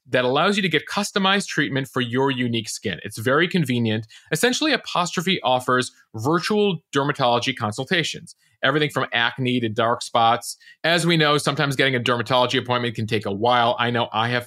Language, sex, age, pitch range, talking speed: English, male, 30-49, 115-145 Hz, 175 wpm